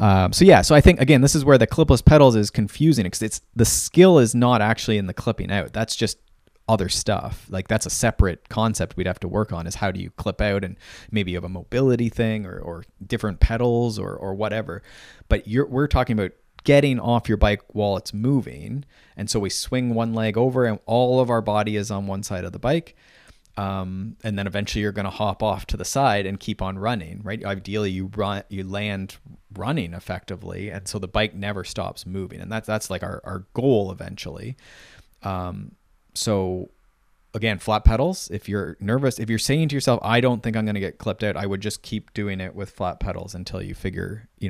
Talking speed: 220 wpm